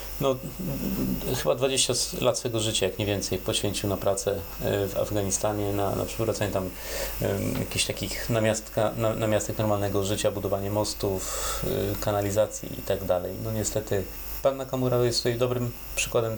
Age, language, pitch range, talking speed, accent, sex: 30-49, Polish, 105-125 Hz, 135 wpm, native, male